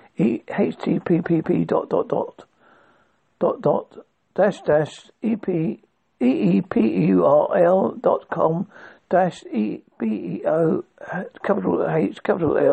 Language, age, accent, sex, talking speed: English, 60-79, British, male, 85 wpm